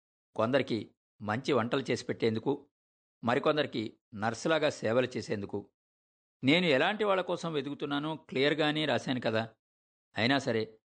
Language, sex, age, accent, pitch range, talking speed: Telugu, male, 50-69, native, 110-145 Hz, 105 wpm